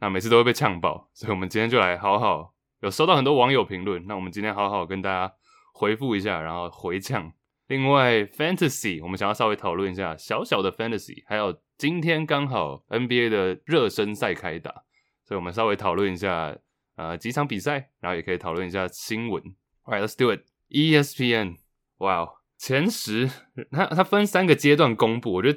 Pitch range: 100-145 Hz